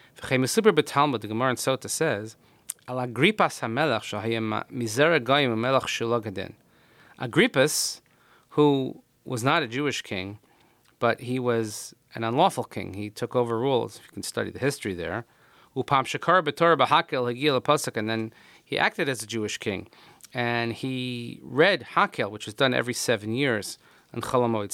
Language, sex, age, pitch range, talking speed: English, male, 30-49, 115-155 Hz, 120 wpm